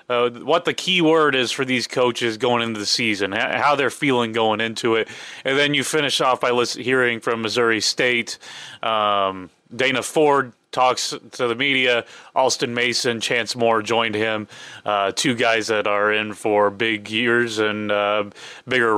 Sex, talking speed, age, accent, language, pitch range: male, 170 wpm, 30-49, American, English, 110-130 Hz